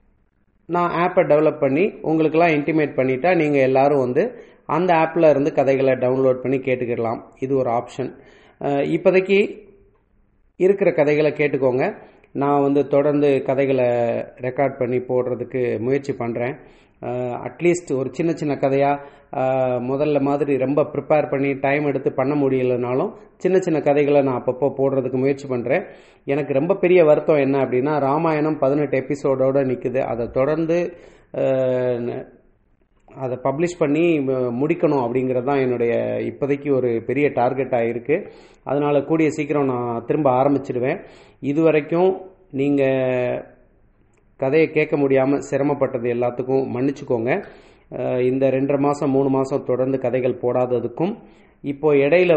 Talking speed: 110 wpm